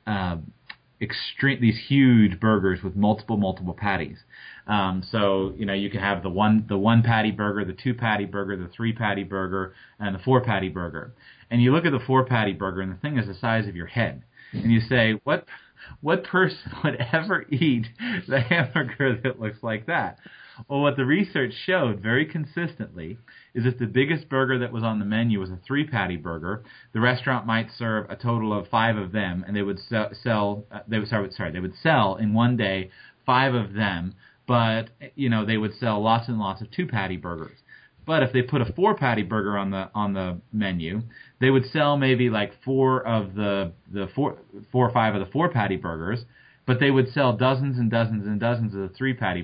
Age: 30-49